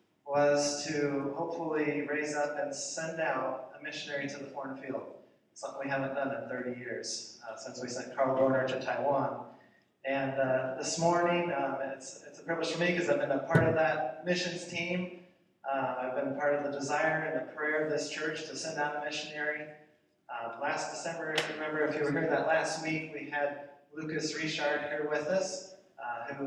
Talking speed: 200 wpm